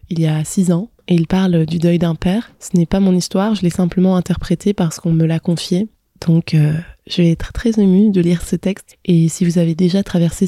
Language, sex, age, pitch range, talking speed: French, female, 20-39, 170-190 Hz, 245 wpm